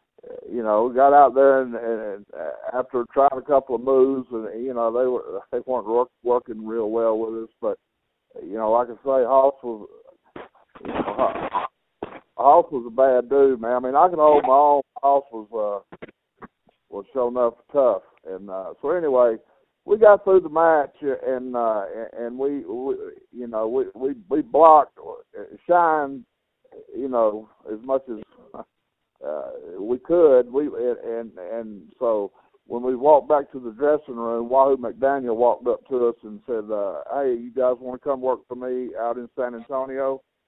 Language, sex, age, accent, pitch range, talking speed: English, male, 60-79, American, 115-140 Hz, 180 wpm